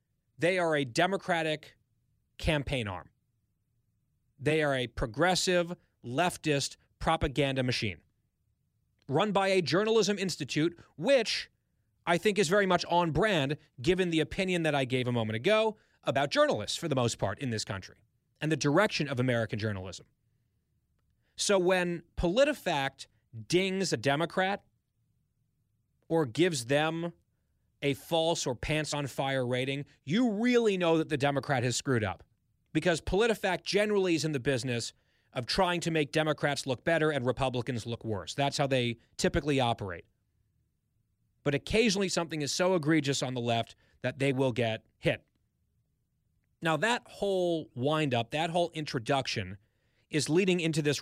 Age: 30-49